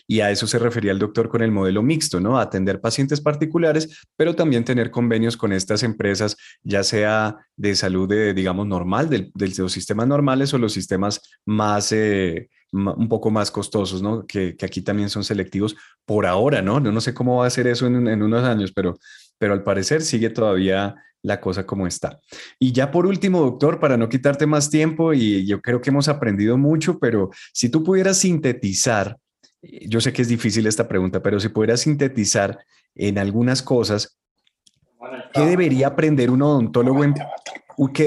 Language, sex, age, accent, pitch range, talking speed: Spanish, male, 20-39, Colombian, 105-135 Hz, 185 wpm